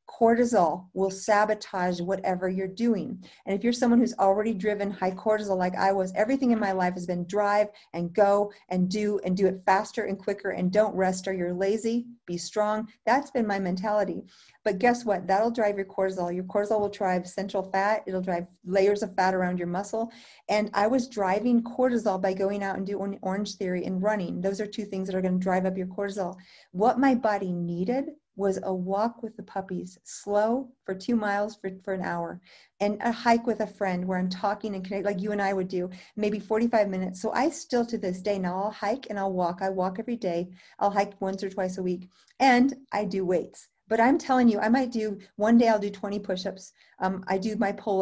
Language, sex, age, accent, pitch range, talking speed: English, female, 40-59, American, 185-220 Hz, 220 wpm